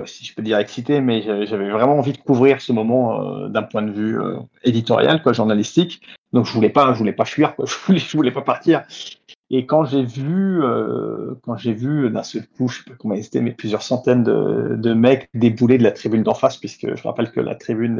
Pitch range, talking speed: 115-140 Hz, 245 wpm